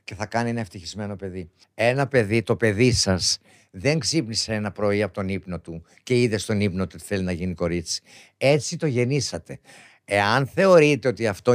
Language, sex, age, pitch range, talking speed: Greek, male, 60-79, 105-140 Hz, 185 wpm